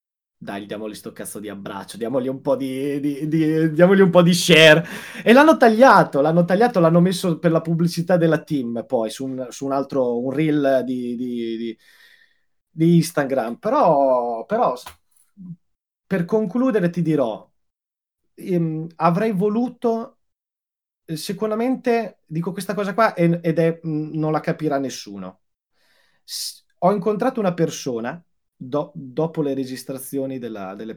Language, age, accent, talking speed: Italian, 30-49, native, 145 wpm